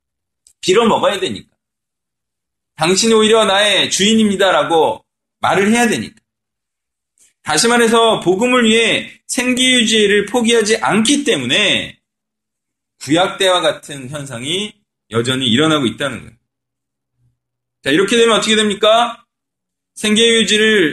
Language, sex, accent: Korean, male, native